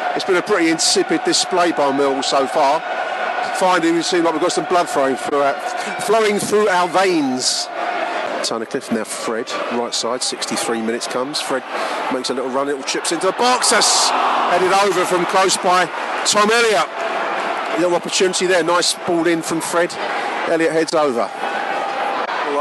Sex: male